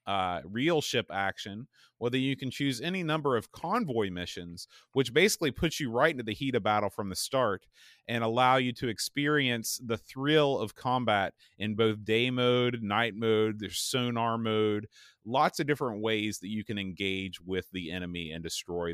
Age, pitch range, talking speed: 30-49, 100-125 Hz, 180 wpm